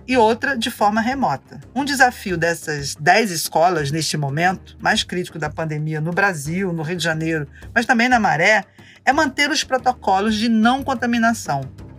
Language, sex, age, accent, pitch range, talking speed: Portuguese, female, 40-59, Brazilian, 160-225 Hz, 165 wpm